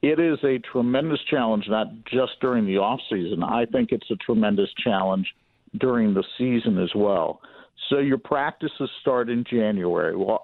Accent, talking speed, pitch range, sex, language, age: American, 165 wpm, 115-160 Hz, male, English, 50-69